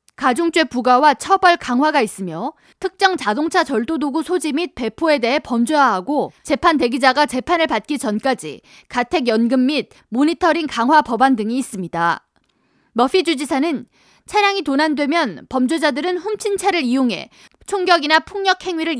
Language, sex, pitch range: Korean, female, 250-335 Hz